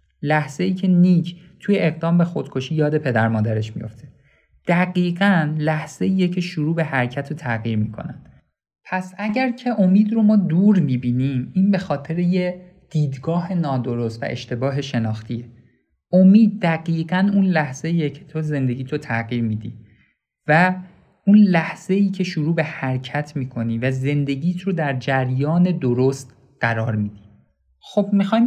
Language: Persian